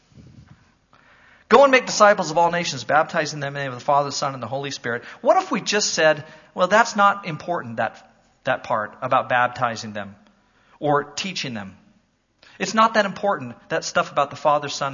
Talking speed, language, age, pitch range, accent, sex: 195 wpm, English, 40-59, 135-200 Hz, American, male